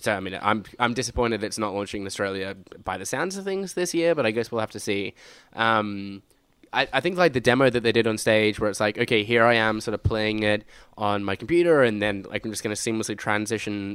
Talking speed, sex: 260 wpm, male